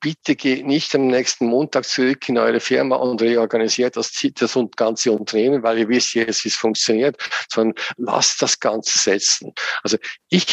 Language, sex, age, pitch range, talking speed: English, male, 50-69, 115-145 Hz, 170 wpm